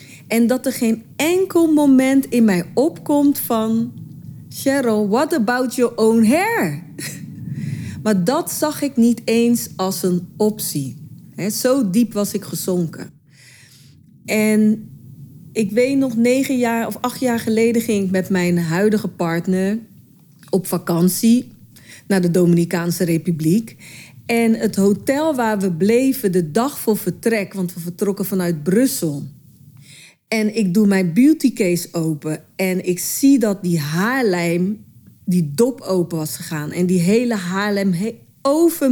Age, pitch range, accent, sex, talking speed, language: 40-59, 175-240 Hz, Dutch, female, 140 wpm, Dutch